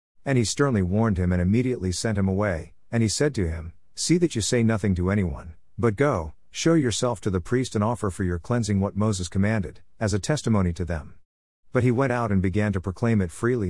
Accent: American